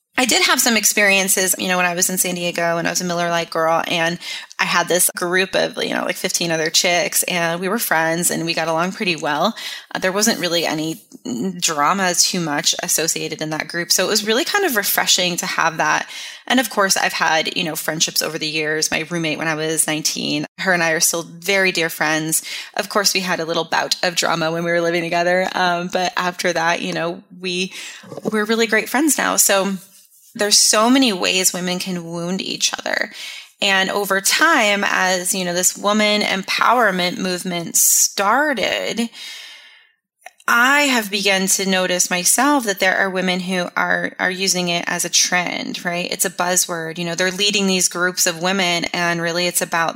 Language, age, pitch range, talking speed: English, 20-39, 170-200 Hz, 205 wpm